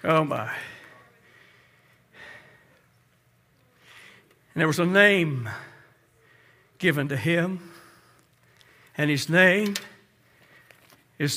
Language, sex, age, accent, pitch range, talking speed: English, male, 60-79, American, 190-290 Hz, 75 wpm